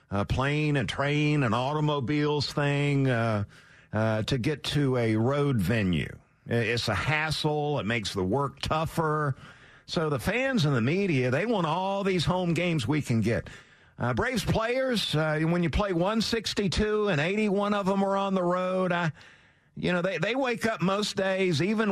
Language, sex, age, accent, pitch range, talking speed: English, male, 50-69, American, 115-155 Hz, 180 wpm